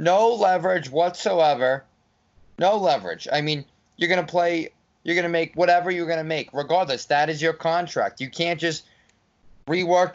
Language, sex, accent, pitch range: English, male, American, 135-170 Hz